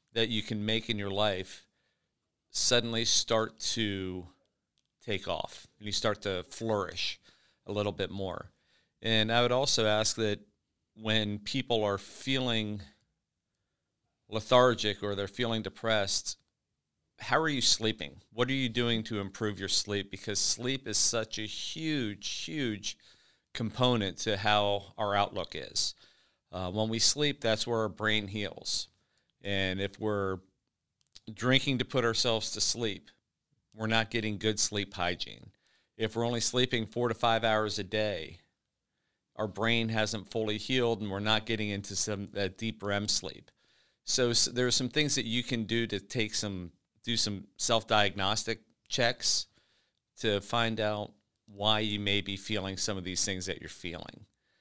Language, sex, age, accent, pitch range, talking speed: English, male, 40-59, American, 100-115 Hz, 155 wpm